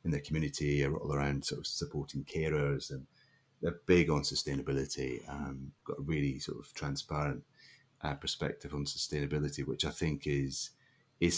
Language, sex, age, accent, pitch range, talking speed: English, male, 30-49, British, 70-85 Hz, 160 wpm